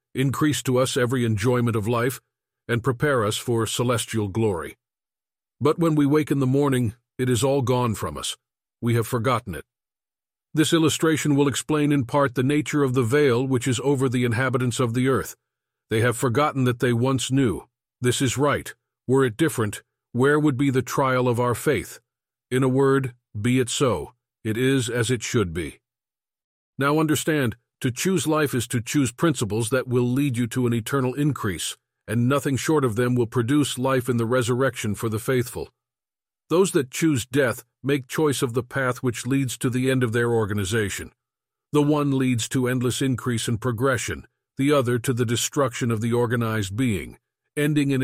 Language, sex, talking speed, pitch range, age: English, male, 185 wpm, 120-140 Hz, 50-69